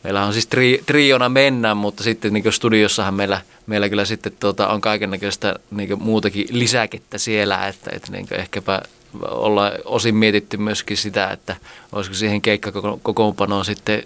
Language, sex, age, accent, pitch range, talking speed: Finnish, male, 20-39, native, 100-120 Hz, 150 wpm